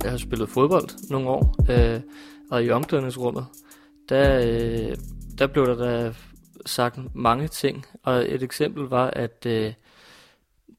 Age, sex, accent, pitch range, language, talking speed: 30-49, male, native, 125-160 Hz, Danish, 140 wpm